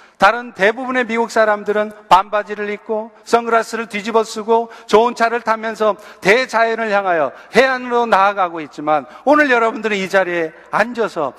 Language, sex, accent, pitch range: Korean, male, native, 175-230 Hz